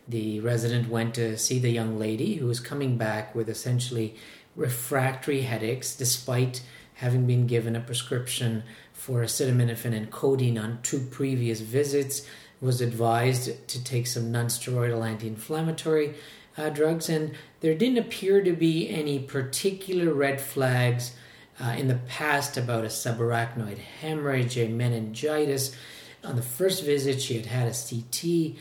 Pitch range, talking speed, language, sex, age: 120-145 Hz, 140 wpm, English, male, 40-59